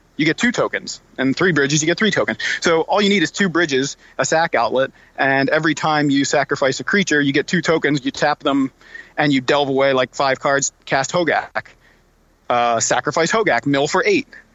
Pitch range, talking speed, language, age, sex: 135-170 Hz, 205 wpm, English, 30-49, male